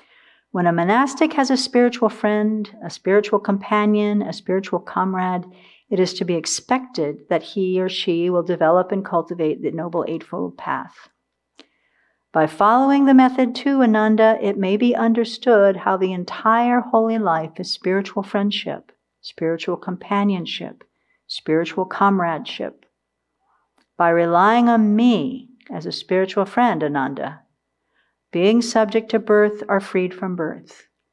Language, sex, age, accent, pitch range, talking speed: English, female, 50-69, American, 175-215 Hz, 135 wpm